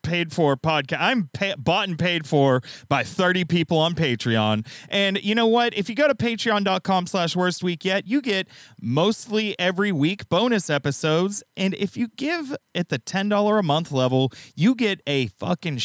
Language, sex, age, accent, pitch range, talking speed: English, male, 30-49, American, 150-220 Hz, 180 wpm